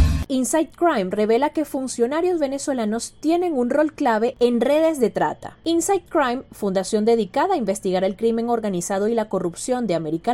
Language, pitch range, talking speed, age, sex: Spanish, 205-290 Hz, 165 wpm, 30-49, female